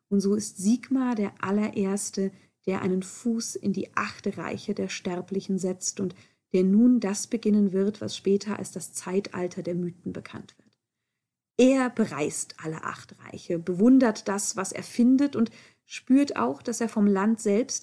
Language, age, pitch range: German, 40-59, 195-230 Hz